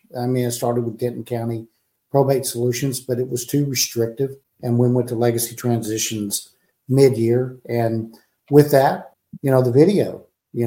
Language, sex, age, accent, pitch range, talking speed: English, male, 50-69, American, 115-135 Hz, 165 wpm